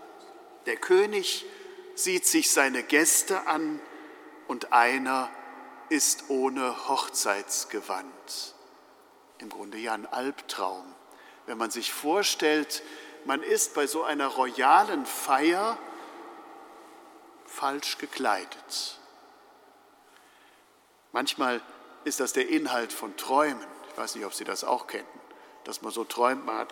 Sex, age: male, 50-69